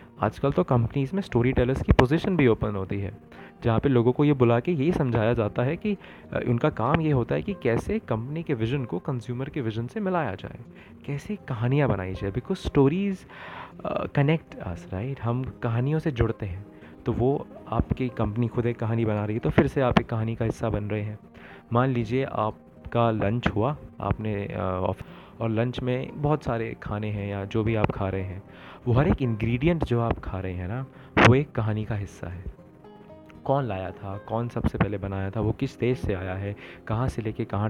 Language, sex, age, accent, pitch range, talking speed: Hindi, male, 20-39, native, 105-130 Hz, 210 wpm